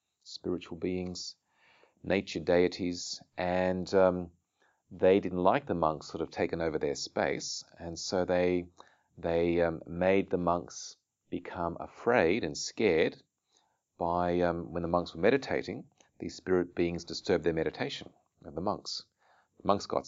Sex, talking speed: male, 145 wpm